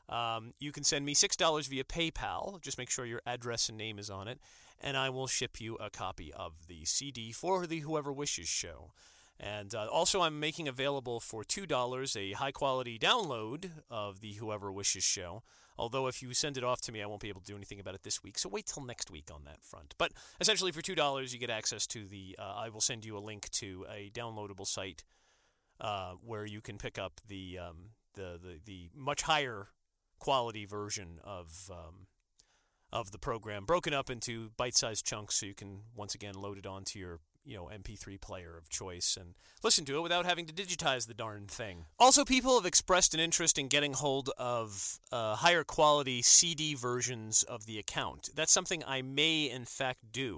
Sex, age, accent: male, 40-59, American